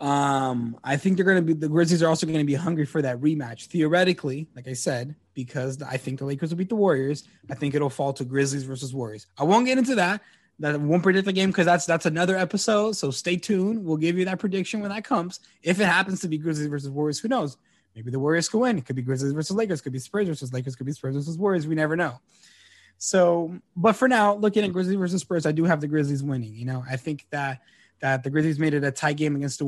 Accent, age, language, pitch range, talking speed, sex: American, 20-39, English, 135-175 Hz, 260 wpm, male